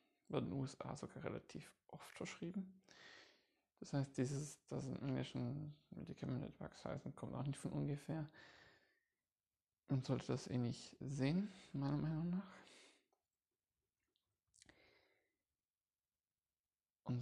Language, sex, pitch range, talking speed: German, male, 120-170 Hz, 110 wpm